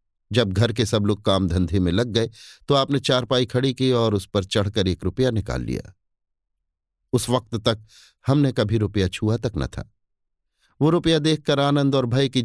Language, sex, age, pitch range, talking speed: Hindi, male, 50-69, 100-125 Hz, 195 wpm